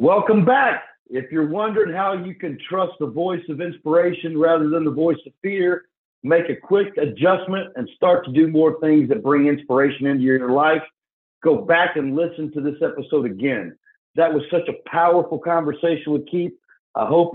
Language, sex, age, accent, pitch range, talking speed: English, male, 50-69, American, 140-175 Hz, 185 wpm